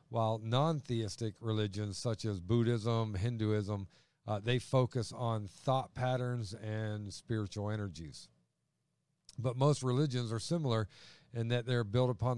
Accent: American